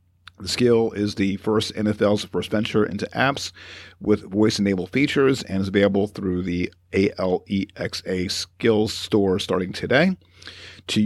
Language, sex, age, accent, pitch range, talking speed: English, male, 50-69, American, 95-115 Hz, 130 wpm